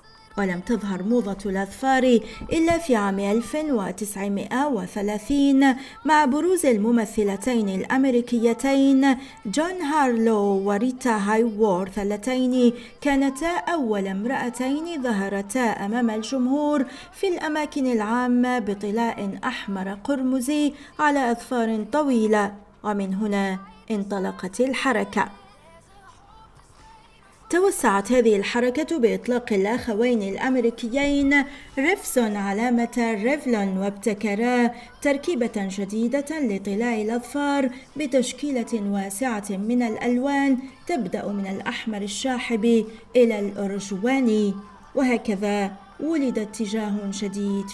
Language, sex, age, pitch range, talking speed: Arabic, female, 40-59, 205-265 Hz, 80 wpm